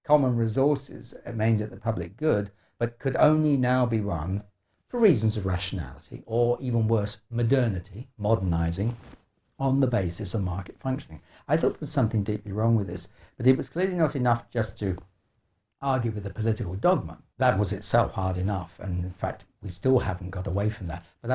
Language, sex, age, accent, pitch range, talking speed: English, male, 60-79, British, 100-125 Hz, 185 wpm